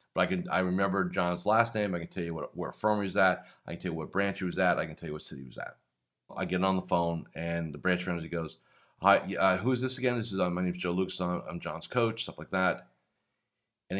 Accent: American